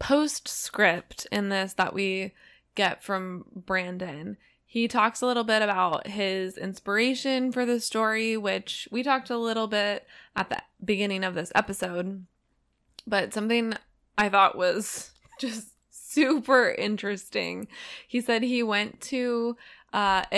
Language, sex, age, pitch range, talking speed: English, female, 20-39, 185-230 Hz, 135 wpm